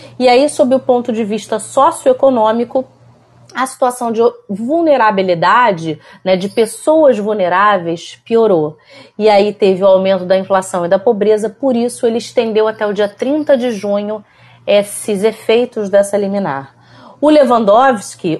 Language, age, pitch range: Portuguese, 30-49, 175-245 Hz